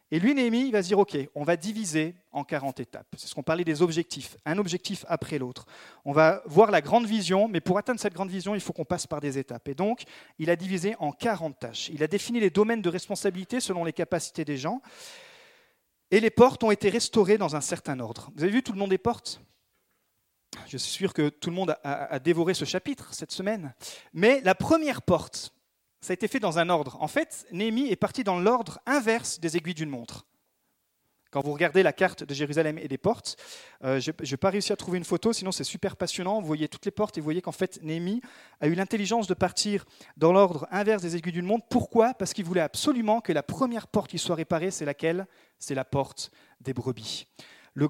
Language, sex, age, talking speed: French, male, 40-59, 230 wpm